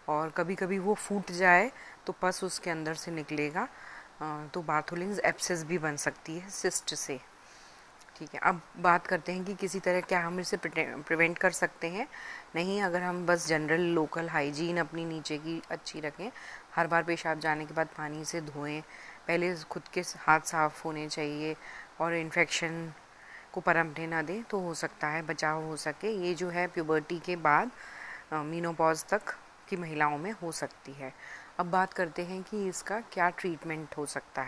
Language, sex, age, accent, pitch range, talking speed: Hindi, female, 30-49, native, 160-180 Hz, 180 wpm